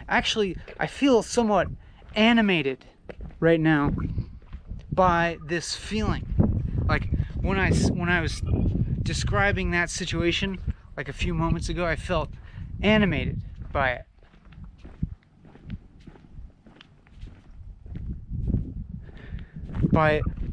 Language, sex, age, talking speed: English, male, 30-49, 85 wpm